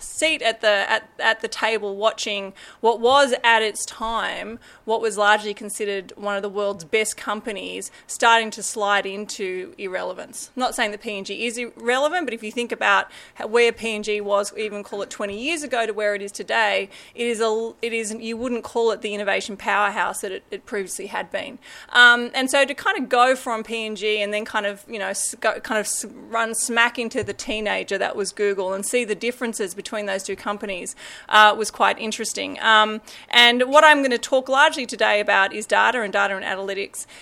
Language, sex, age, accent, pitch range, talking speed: English, female, 20-39, Australian, 205-240 Hz, 215 wpm